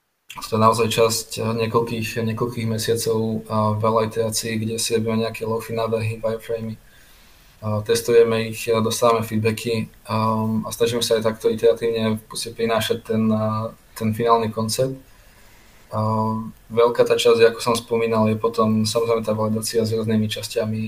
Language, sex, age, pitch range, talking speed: Slovak, male, 20-39, 110-115 Hz, 140 wpm